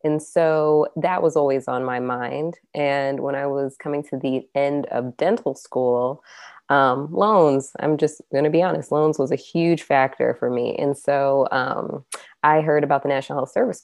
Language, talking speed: English, 190 wpm